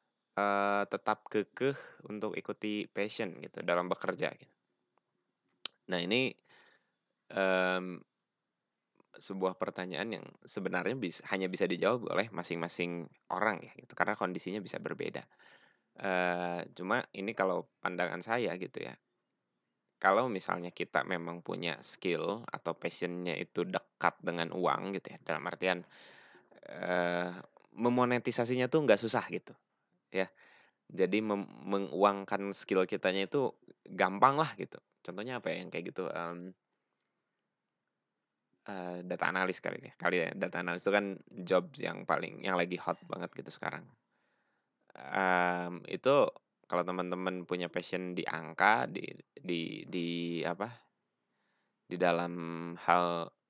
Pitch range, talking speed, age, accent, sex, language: 85-100 Hz, 125 wpm, 20-39, native, male, Indonesian